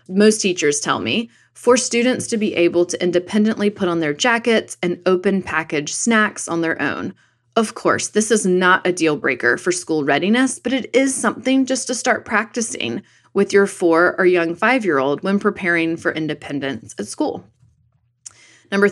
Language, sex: English, female